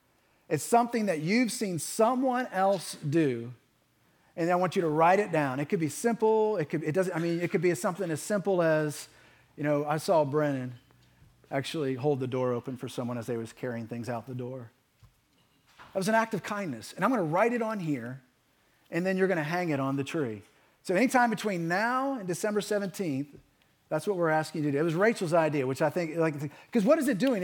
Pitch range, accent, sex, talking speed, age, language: 140-205 Hz, American, male, 225 wpm, 40-59, English